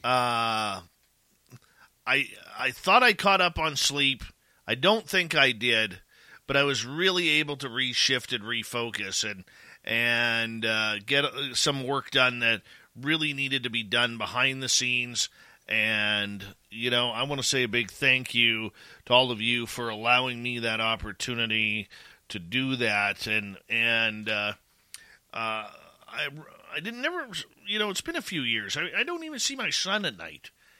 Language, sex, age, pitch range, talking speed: English, male, 40-59, 110-150 Hz, 170 wpm